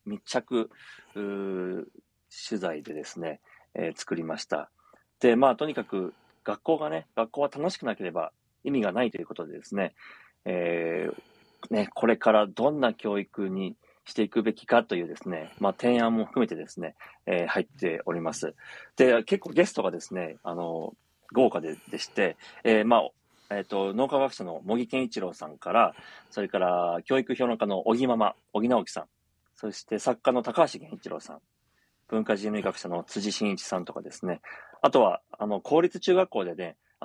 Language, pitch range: Japanese, 95-125 Hz